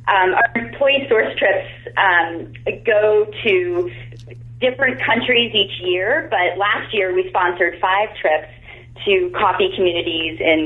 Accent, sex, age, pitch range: American, female, 30-49, 155-190 Hz